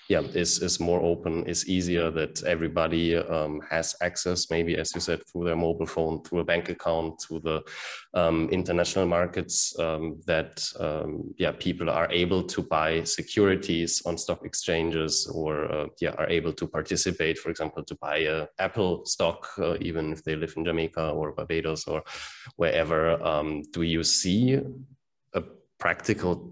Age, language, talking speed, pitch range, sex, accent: 20-39, English, 165 wpm, 80-90 Hz, male, German